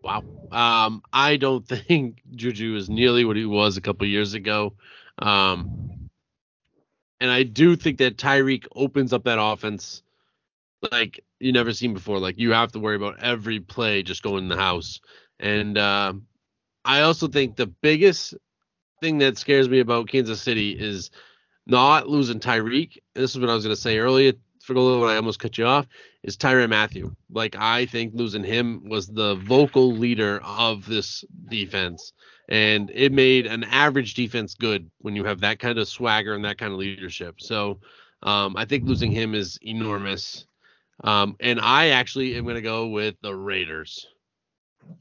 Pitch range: 105-130 Hz